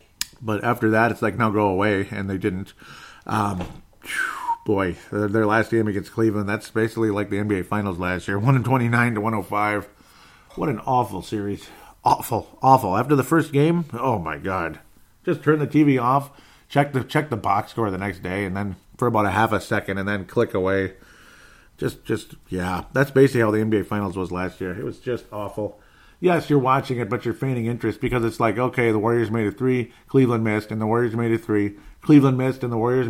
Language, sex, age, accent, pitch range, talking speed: English, male, 50-69, American, 100-125 Hz, 215 wpm